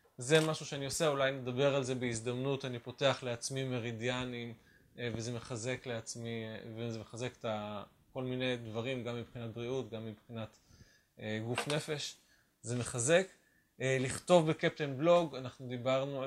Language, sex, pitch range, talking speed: Hebrew, male, 120-155 Hz, 135 wpm